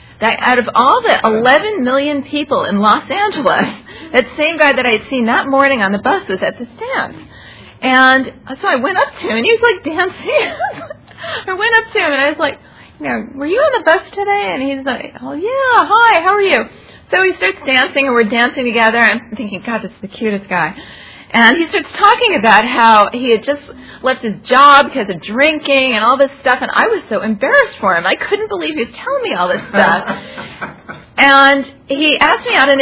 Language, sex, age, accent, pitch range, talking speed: English, female, 40-59, American, 235-315 Hz, 225 wpm